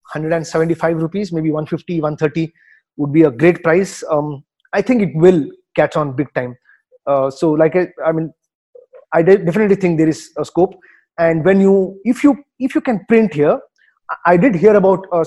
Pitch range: 150-195 Hz